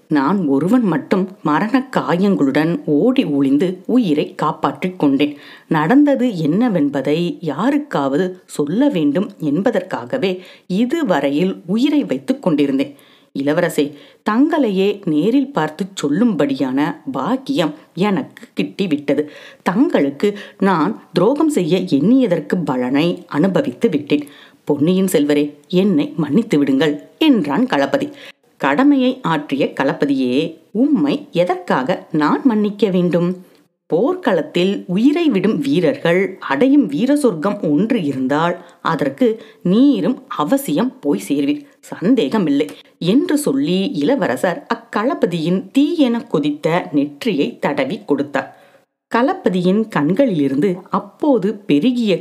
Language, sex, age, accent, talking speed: Tamil, female, 50-69, native, 90 wpm